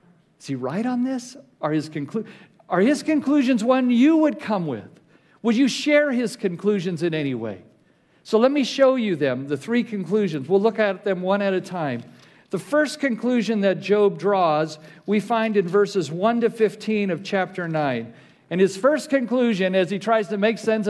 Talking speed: 185 wpm